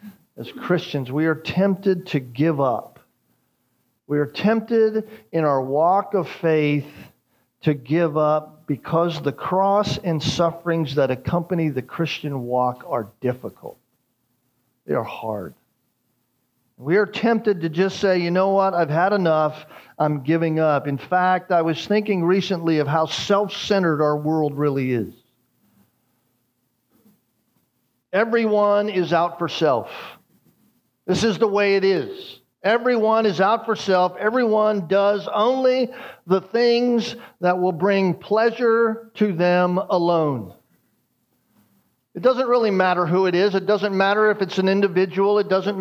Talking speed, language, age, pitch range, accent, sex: 140 wpm, English, 50-69, 155-205 Hz, American, male